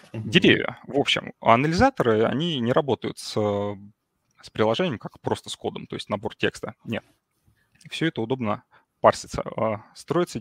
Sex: male